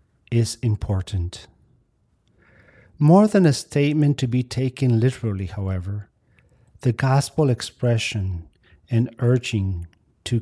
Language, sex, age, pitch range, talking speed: English, male, 50-69, 100-125 Hz, 100 wpm